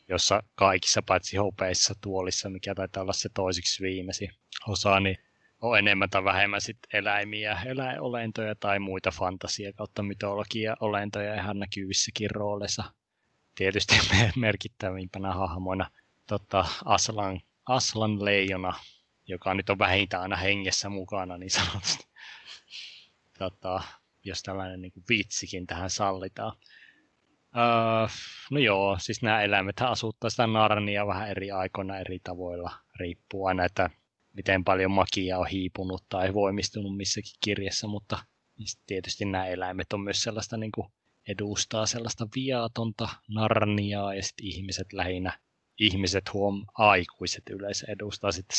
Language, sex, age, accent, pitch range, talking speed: Finnish, male, 20-39, native, 95-110 Hz, 120 wpm